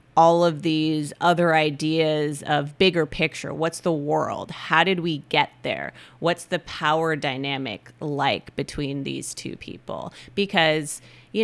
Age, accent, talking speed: 30-49, American, 140 wpm